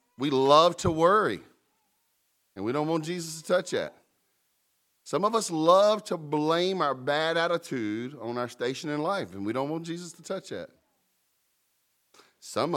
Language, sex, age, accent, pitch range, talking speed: English, male, 40-59, American, 120-155 Hz, 165 wpm